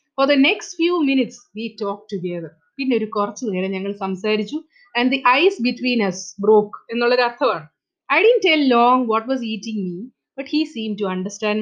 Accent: Indian